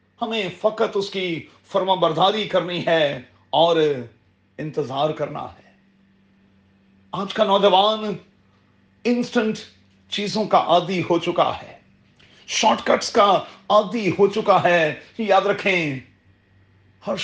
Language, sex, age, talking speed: Urdu, male, 40-59, 110 wpm